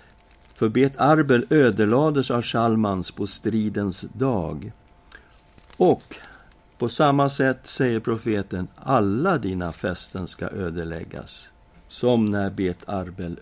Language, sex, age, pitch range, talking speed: Swedish, male, 50-69, 90-135 Hz, 100 wpm